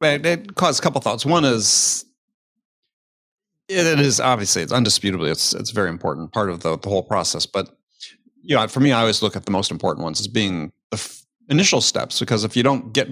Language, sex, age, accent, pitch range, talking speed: English, male, 40-59, American, 110-150 Hz, 220 wpm